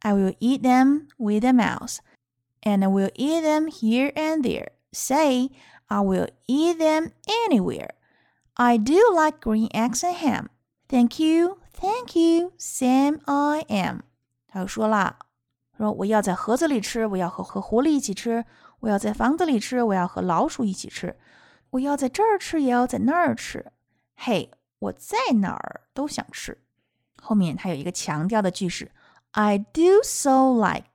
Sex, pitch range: female, 180-265 Hz